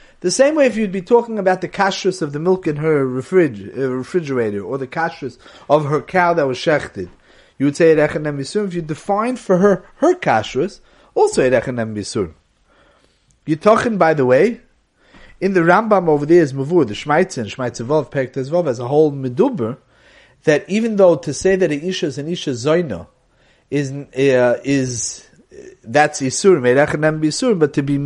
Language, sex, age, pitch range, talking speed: English, male, 30-49, 140-190 Hz, 170 wpm